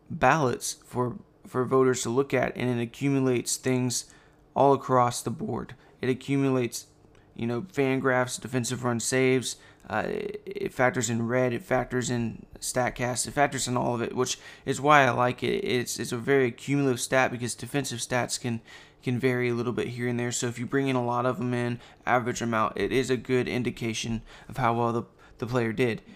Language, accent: English, American